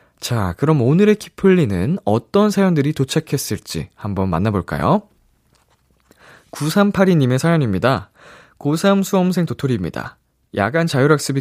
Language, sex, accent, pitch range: Korean, male, native, 105-160 Hz